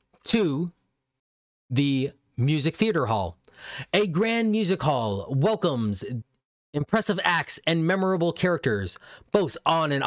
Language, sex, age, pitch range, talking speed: English, male, 20-39, 130-185 Hz, 105 wpm